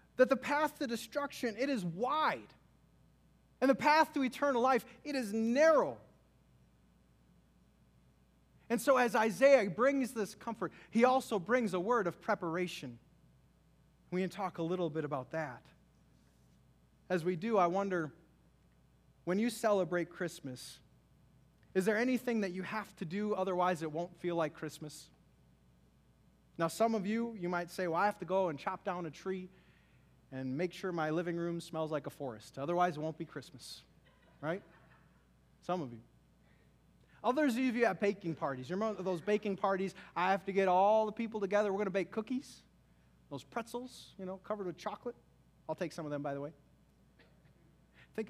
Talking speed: 170 wpm